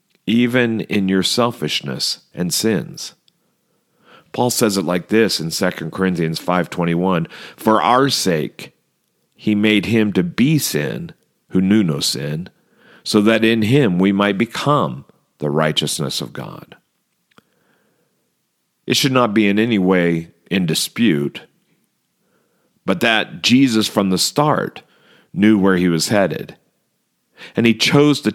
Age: 50-69